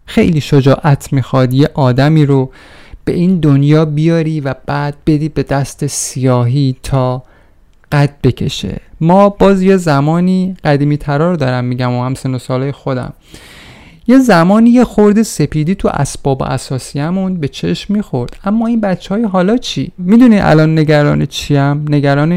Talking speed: 140 wpm